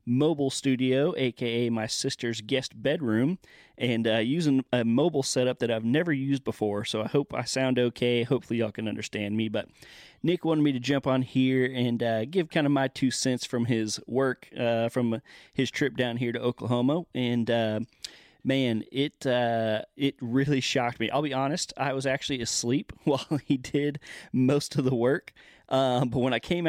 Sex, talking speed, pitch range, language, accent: male, 190 wpm, 115-140 Hz, English, American